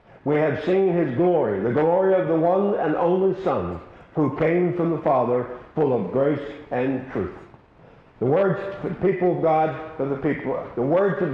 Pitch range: 135-180 Hz